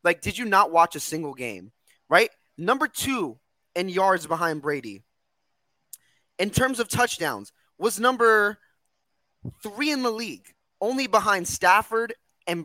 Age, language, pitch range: 20-39, English, 155-235 Hz